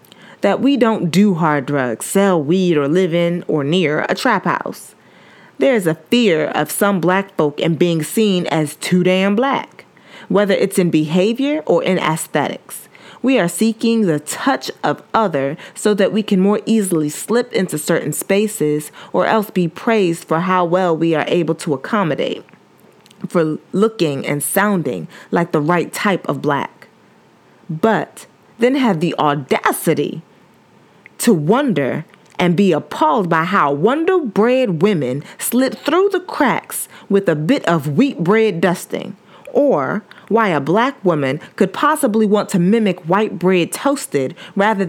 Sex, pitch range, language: female, 165-220 Hz, English